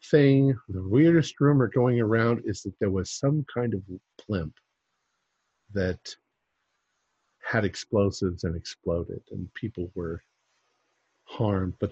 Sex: male